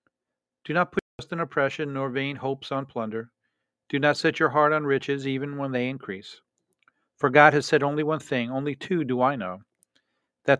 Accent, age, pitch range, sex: American, 50-69, 125-145 Hz, male